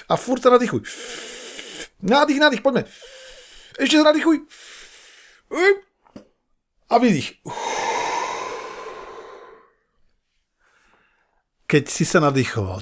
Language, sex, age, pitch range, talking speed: Slovak, male, 50-69, 120-200 Hz, 70 wpm